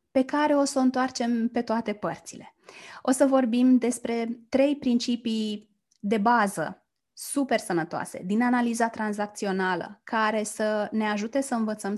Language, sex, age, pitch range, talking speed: Romanian, female, 20-39, 205-250 Hz, 140 wpm